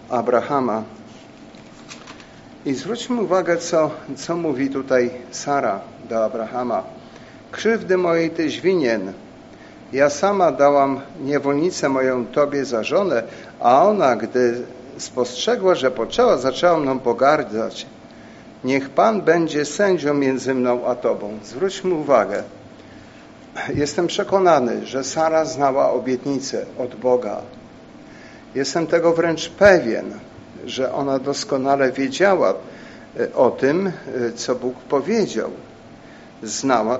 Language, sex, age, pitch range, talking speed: Polish, male, 50-69, 130-170 Hz, 105 wpm